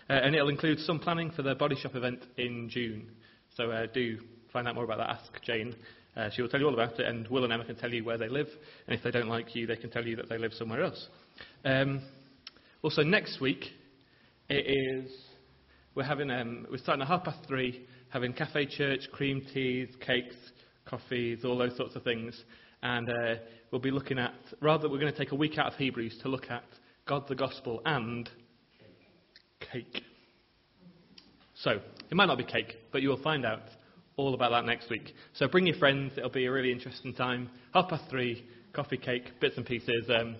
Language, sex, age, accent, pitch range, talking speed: English, male, 30-49, British, 120-150 Hz, 210 wpm